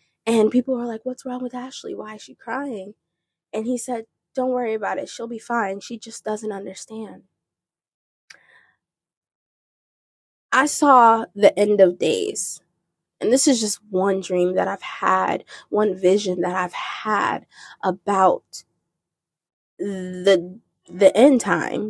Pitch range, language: 200-245 Hz, English